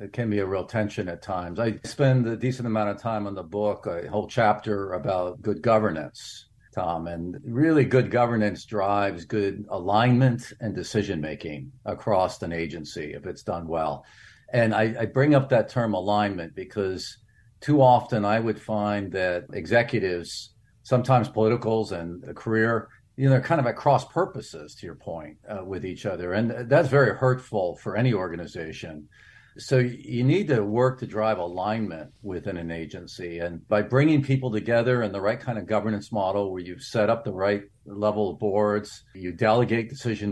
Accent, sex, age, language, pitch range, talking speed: American, male, 50-69, English, 100-125 Hz, 175 wpm